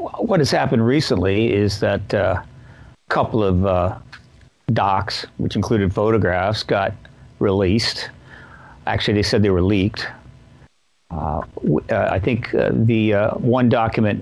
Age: 50-69